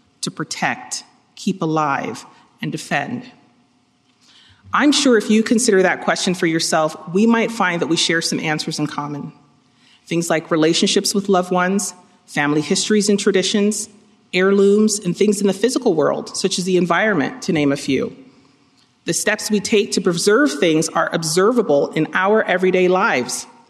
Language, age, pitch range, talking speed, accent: English, 40-59, 170-220 Hz, 160 wpm, American